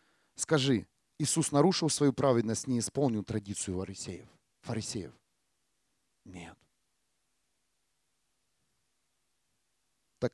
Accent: native